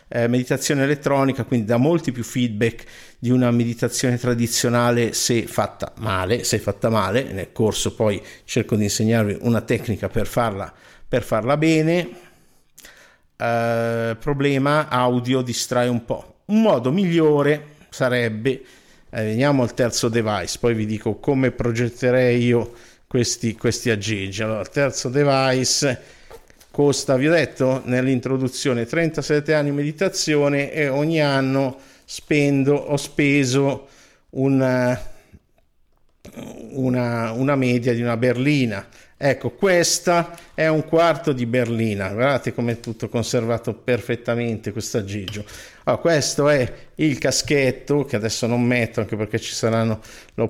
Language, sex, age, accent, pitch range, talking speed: Italian, male, 50-69, native, 120-145 Hz, 130 wpm